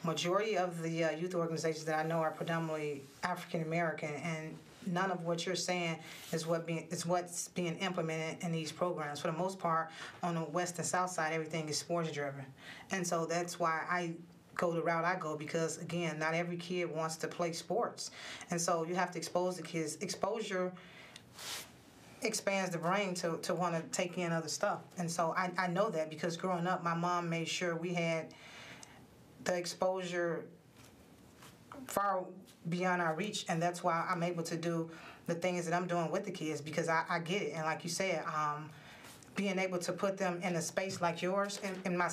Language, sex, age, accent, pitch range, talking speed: English, female, 30-49, American, 160-180 Hz, 200 wpm